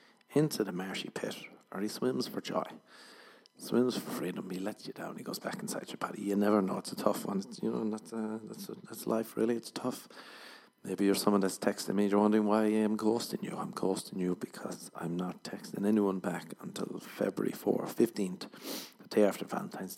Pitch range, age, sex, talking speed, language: 95-110 Hz, 40-59, male, 215 wpm, English